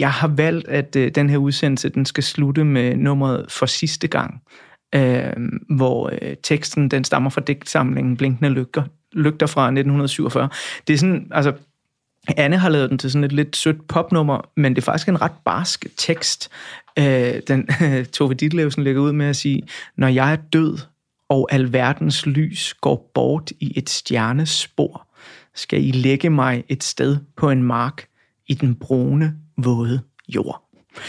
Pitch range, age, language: 135-160 Hz, 30-49, Danish